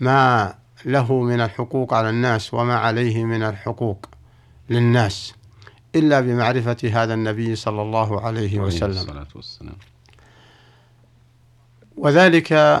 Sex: male